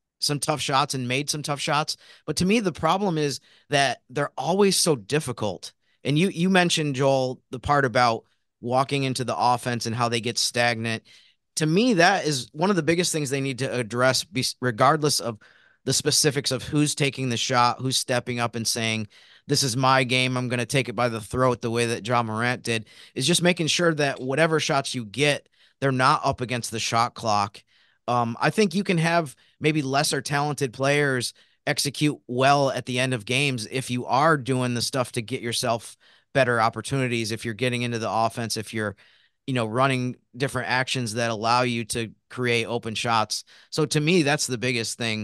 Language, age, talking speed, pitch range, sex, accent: English, 30-49, 200 wpm, 115-145 Hz, male, American